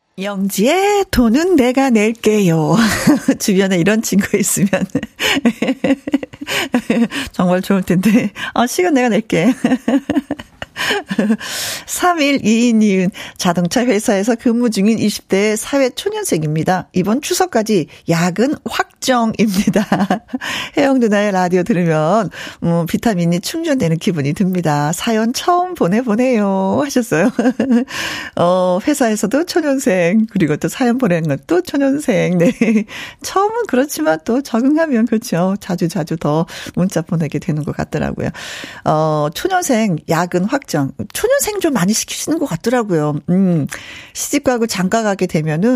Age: 50-69